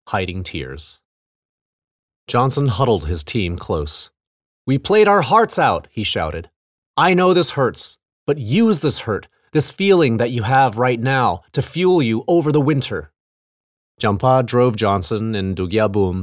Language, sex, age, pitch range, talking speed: English, male, 30-49, 90-125 Hz, 150 wpm